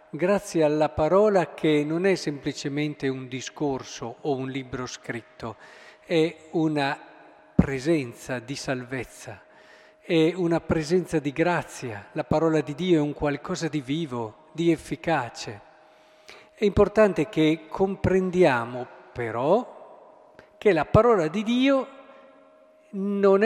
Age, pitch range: 50-69, 135-190 Hz